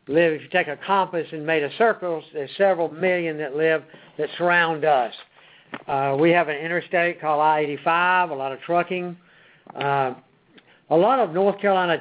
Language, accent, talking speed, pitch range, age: English, American, 175 wpm, 145-170 Hz, 60-79